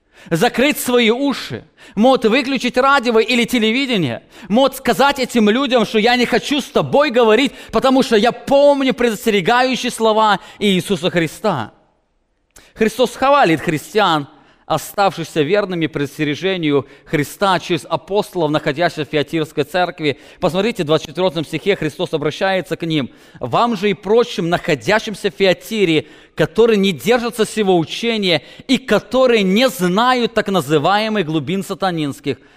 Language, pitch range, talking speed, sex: English, 160-230 Hz, 125 wpm, male